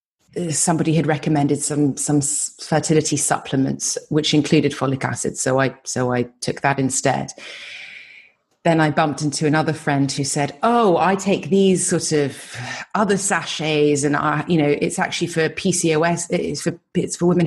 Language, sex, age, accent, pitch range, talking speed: English, female, 30-49, British, 150-205 Hz, 160 wpm